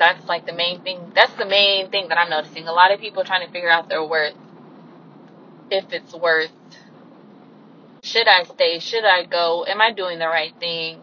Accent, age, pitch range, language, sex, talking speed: American, 20-39, 170-225 Hz, English, female, 205 wpm